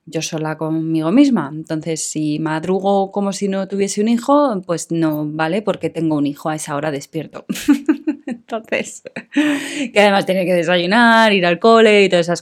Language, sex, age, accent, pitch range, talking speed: Spanish, female, 20-39, Spanish, 170-230 Hz, 175 wpm